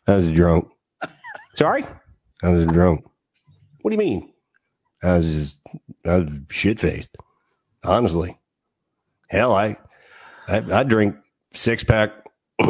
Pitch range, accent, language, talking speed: 105-150 Hz, American, English, 115 wpm